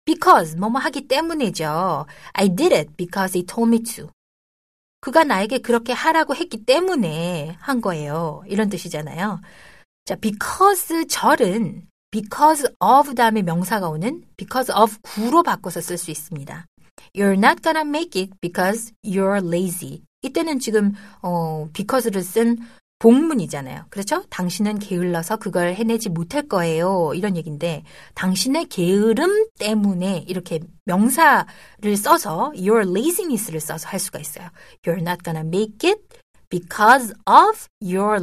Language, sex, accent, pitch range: Korean, female, native, 180-260 Hz